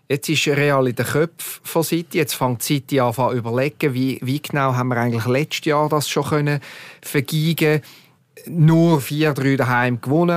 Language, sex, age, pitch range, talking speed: German, male, 40-59, 130-155 Hz, 180 wpm